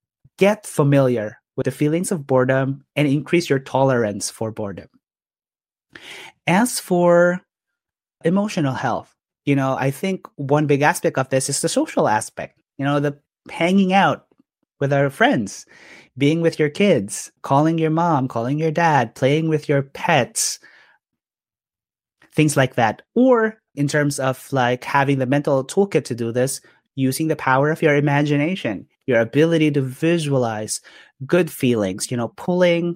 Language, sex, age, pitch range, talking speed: English, male, 30-49, 125-155 Hz, 150 wpm